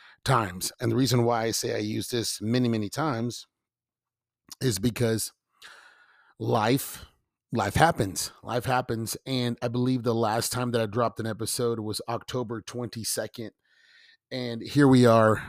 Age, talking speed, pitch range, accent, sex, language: 30-49, 145 wpm, 110-125 Hz, American, male, English